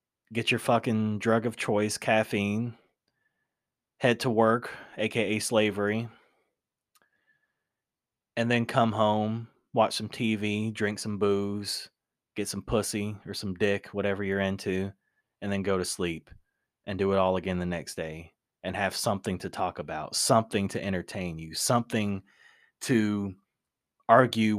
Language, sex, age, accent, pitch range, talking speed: English, male, 20-39, American, 100-120 Hz, 140 wpm